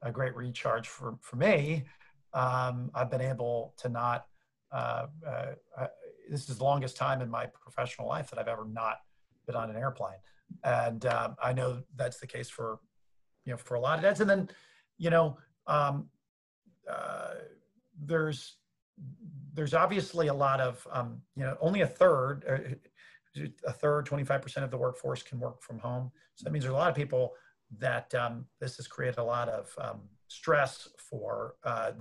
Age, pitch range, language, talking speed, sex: 40-59, 120-145 Hz, English, 180 wpm, male